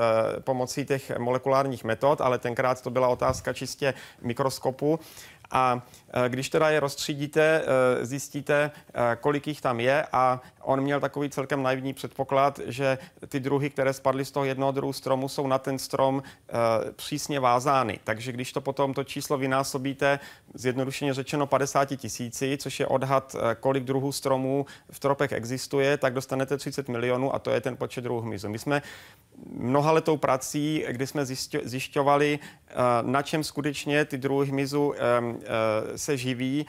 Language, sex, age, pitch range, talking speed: Czech, male, 30-49, 130-145 Hz, 150 wpm